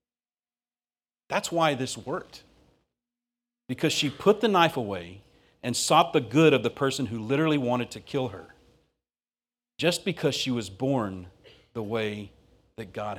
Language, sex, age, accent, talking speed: English, male, 50-69, American, 145 wpm